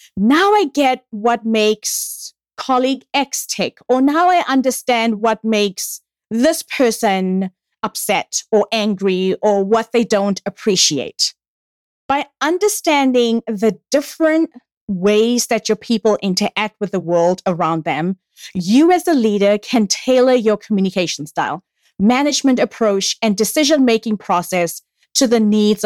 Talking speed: 130 wpm